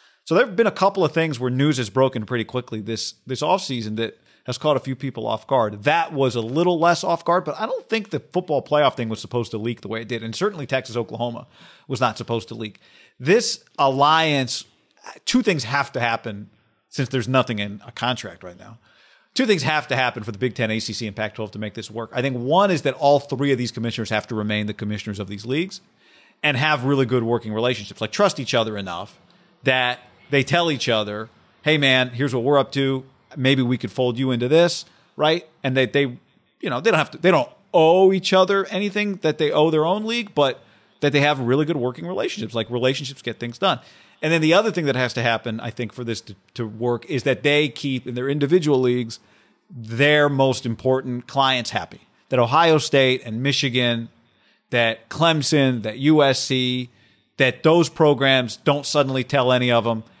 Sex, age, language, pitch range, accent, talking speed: male, 40-59, English, 115-150 Hz, American, 215 wpm